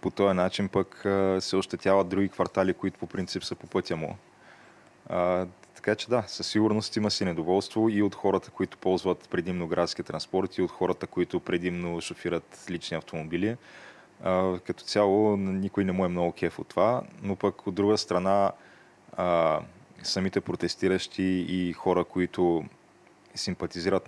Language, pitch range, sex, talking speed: Bulgarian, 90-100 Hz, male, 155 wpm